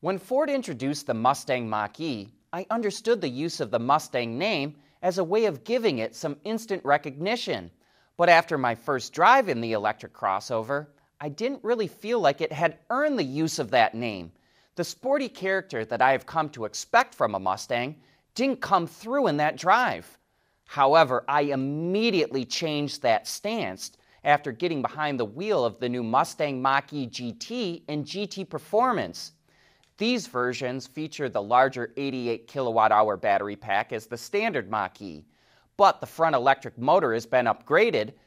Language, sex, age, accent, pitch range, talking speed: English, male, 30-49, American, 125-185 Hz, 160 wpm